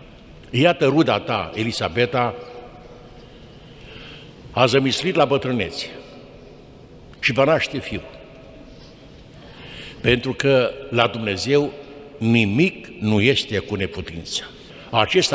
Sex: male